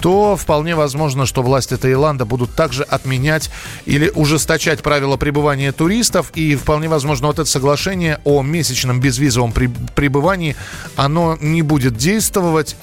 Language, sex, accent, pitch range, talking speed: Russian, male, native, 130-165 Hz, 130 wpm